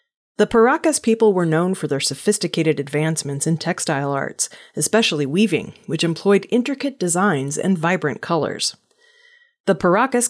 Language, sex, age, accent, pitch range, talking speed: English, female, 30-49, American, 150-225 Hz, 135 wpm